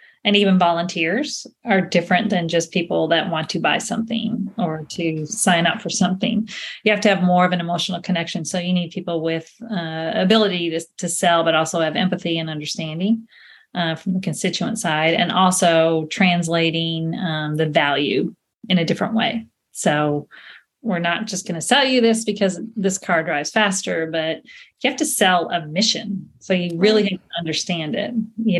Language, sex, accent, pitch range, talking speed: English, female, American, 165-215 Hz, 185 wpm